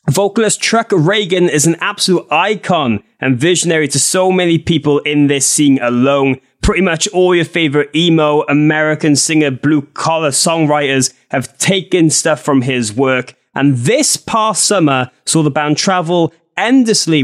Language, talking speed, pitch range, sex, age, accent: English, 145 wpm, 135-190 Hz, male, 20-39, British